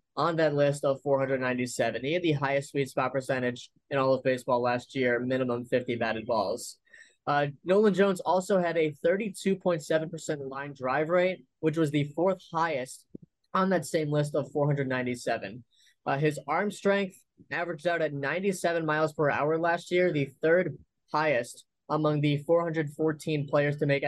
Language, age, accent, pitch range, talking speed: English, 20-39, American, 130-165 Hz, 165 wpm